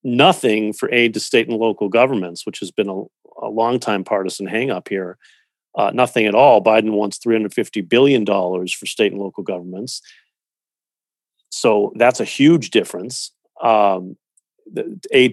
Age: 40-59